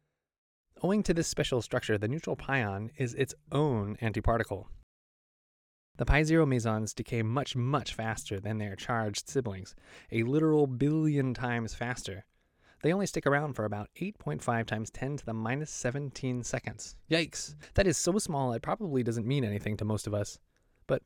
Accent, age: American, 20-39